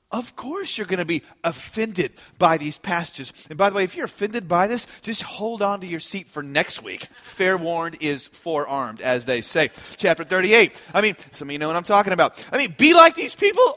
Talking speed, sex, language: 230 wpm, male, English